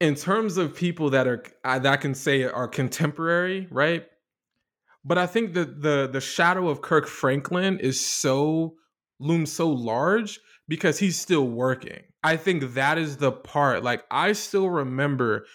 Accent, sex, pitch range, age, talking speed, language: American, male, 130-160 Hz, 20-39, 165 wpm, English